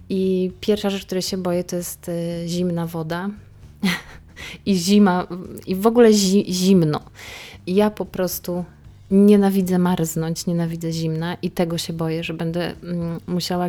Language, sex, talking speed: Polish, female, 140 wpm